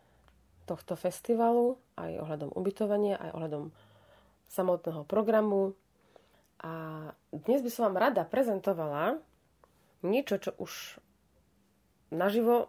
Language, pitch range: Slovak, 165-210 Hz